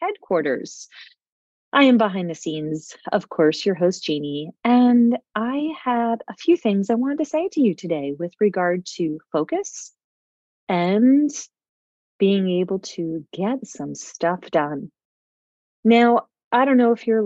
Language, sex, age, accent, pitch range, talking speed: English, female, 30-49, American, 170-235 Hz, 145 wpm